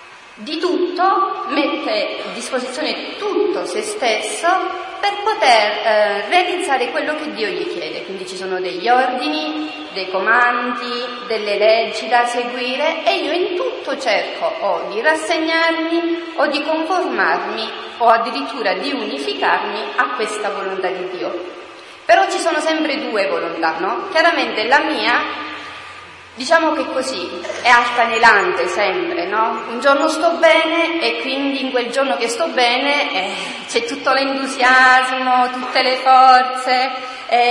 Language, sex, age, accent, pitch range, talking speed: Italian, female, 30-49, native, 235-330 Hz, 135 wpm